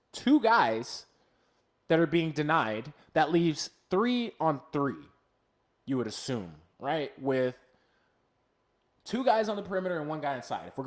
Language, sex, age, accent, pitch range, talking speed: English, male, 20-39, American, 105-160 Hz, 150 wpm